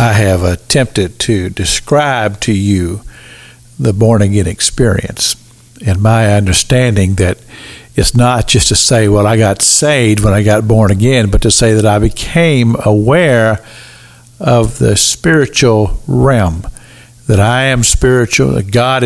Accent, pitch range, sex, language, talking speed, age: American, 110-135 Hz, male, English, 140 wpm, 50-69